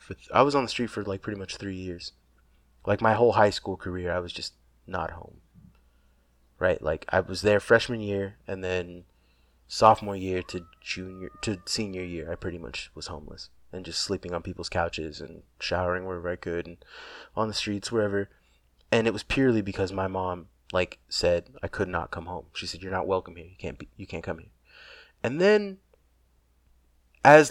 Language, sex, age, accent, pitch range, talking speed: English, male, 20-39, American, 85-105 Hz, 195 wpm